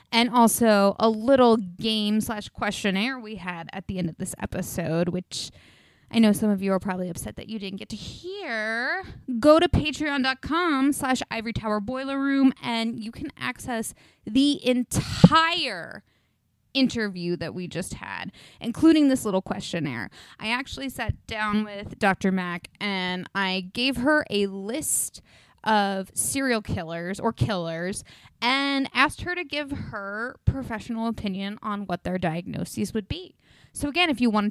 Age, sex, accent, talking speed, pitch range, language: 20-39, female, American, 150 wpm, 195-260 Hz, English